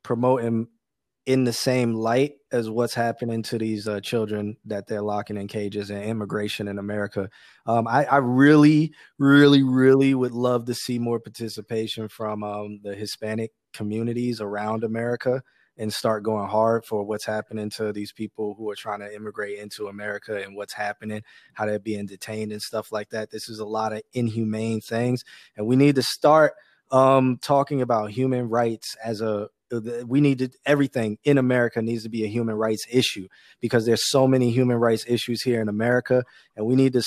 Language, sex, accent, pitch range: English, male, American, 110-130 Hz